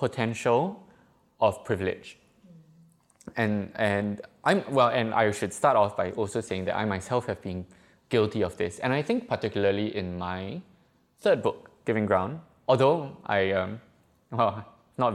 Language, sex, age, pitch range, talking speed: English, male, 20-39, 95-125 Hz, 150 wpm